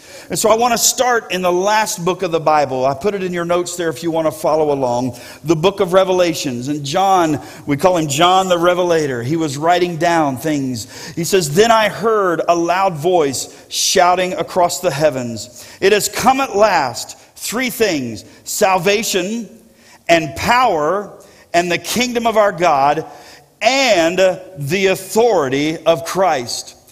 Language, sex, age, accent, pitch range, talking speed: English, male, 50-69, American, 160-210 Hz, 170 wpm